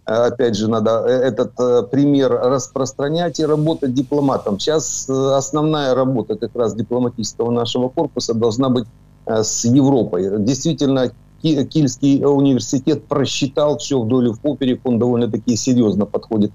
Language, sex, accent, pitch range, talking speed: Ukrainian, male, native, 115-140 Hz, 120 wpm